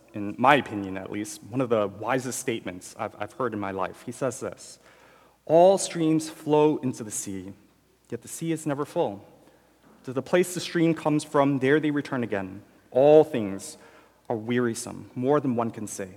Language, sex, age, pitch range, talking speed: English, male, 40-59, 110-150 Hz, 190 wpm